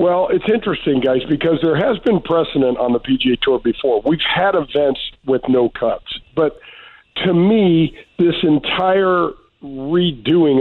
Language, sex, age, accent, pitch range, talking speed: English, male, 50-69, American, 135-180 Hz, 145 wpm